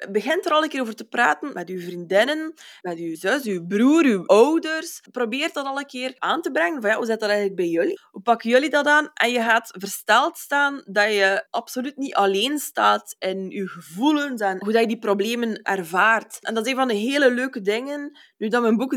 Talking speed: 230 wpm